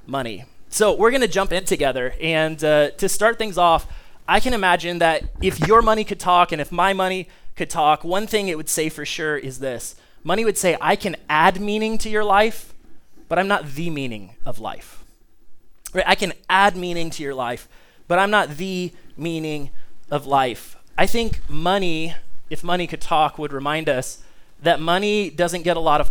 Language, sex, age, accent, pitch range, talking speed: English, male, 20-39, American, 150-185 Hz, 200 wpm